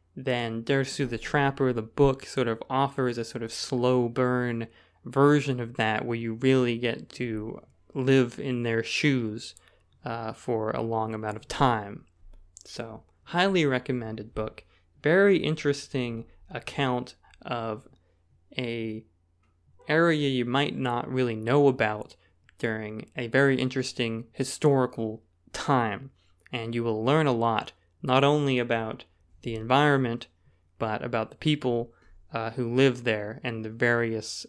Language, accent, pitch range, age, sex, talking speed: English, American, 110-135 Hz, 20-39, male, 135 wpm